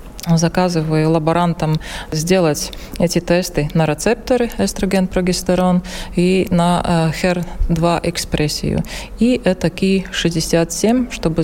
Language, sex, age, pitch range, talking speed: Russian, female, 30-49, 165-200 Hz, 85 wpm